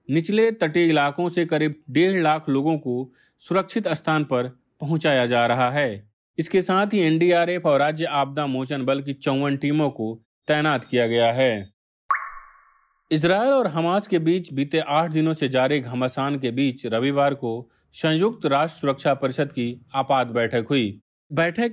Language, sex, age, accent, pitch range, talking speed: Hindi, male, 40-59, native, 130-165 Hz, 155 wpm